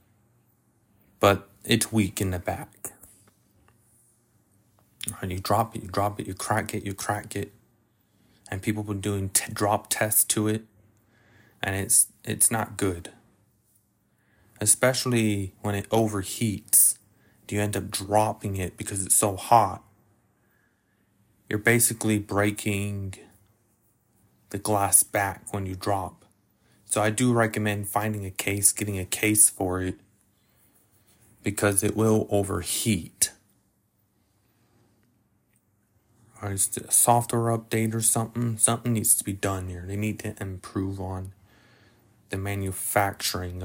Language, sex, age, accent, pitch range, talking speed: English, male, 20-39, American, 100-115 Hz, 130 wpm